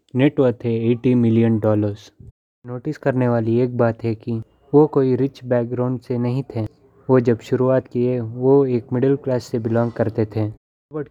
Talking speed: 175 wpm